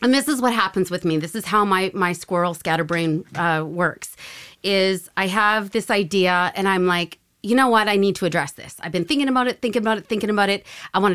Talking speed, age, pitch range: 240 wpm, 30-49, 175-230 Hz